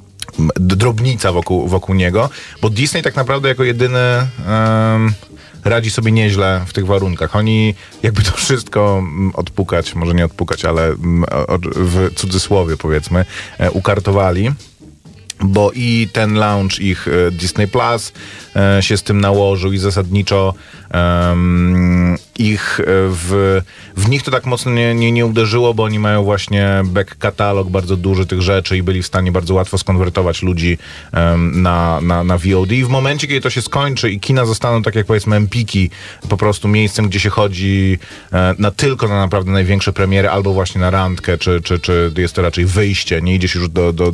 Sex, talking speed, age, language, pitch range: male, 160 wpm, 30-49, Polish, 90-105 Hz